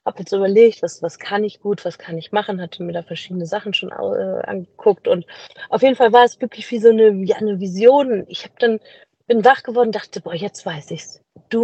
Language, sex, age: German, female, 30-49